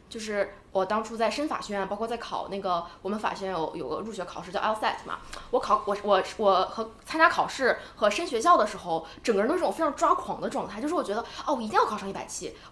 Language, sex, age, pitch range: Chinese, female, 20-39, 200-285 Hz